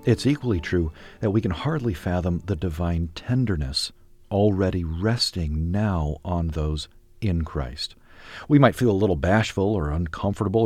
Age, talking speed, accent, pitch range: 50-69, 145 wpm, American, 85-115 Hz